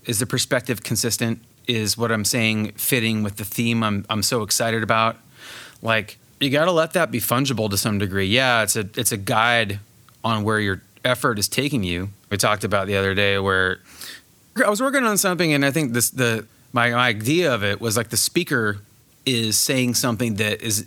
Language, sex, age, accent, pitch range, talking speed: English, male, 30-49, American, 110-140 Hz, 205 wpm